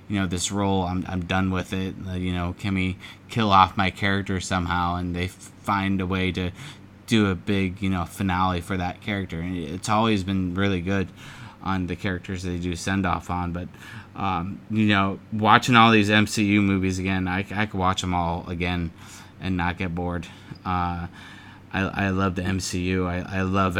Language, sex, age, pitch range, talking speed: English, male, 20-39, 90-100 Hz, 200 wpm